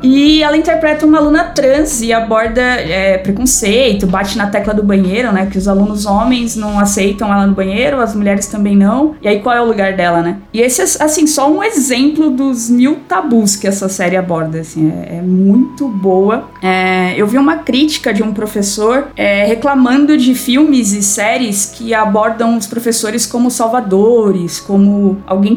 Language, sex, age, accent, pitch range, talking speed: Portuguese, female, 20-39, Brazilian, 200-255 Hz, 175 wpm